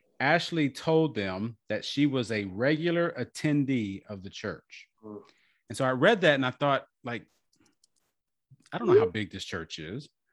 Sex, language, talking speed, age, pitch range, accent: male, English, 170 wpm, 30-49, 105-145 Hz, American